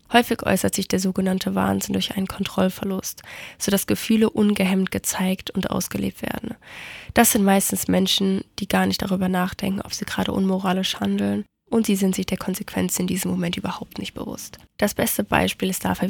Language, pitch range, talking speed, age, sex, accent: German, 180-200 Hz, 175 wpm, 20-39, female, German